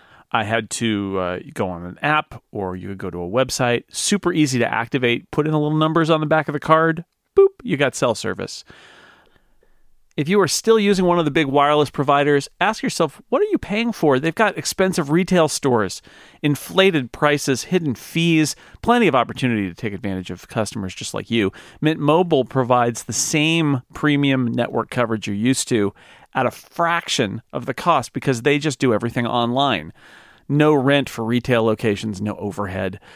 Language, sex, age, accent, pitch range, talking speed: English, male, 40-59, American, 120-155 Hz, 185 wpm